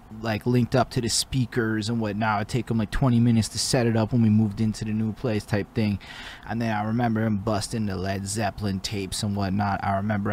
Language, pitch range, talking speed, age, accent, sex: English, 100-115 Hz, 240 wpm, 20-39, American, male